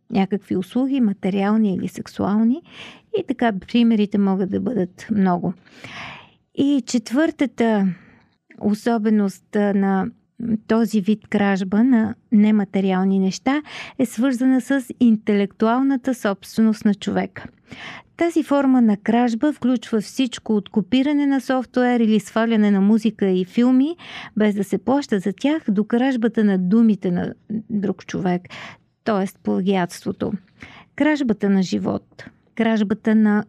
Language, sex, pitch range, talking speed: Bulgarian, female, 200-245 Hz, 115 wpm